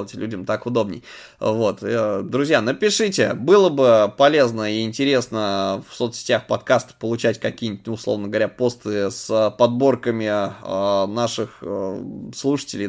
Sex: male